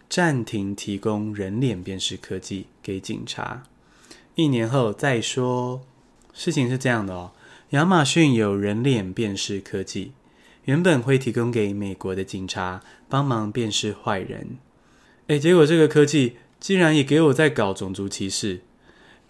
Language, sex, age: Chinese, male, 20-39